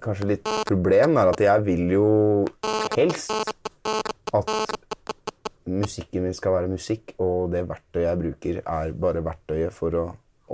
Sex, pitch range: male, 90-110 Hz